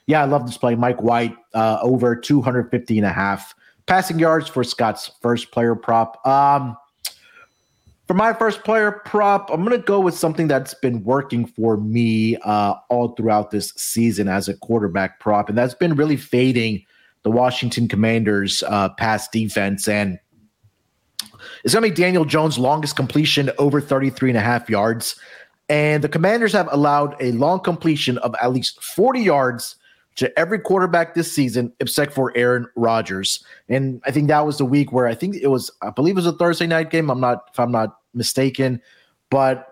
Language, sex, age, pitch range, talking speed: English, male, 30-49, 115-150 Hz, 185 wpm